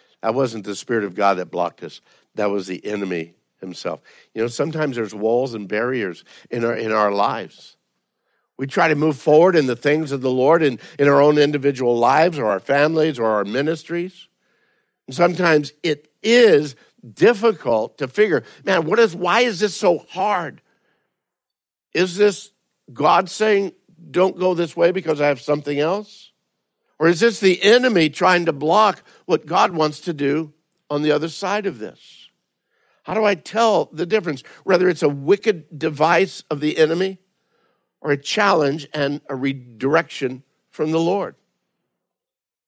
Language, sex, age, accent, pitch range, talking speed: English, male, 60-79, American, 125-180 Hz, 165 wpm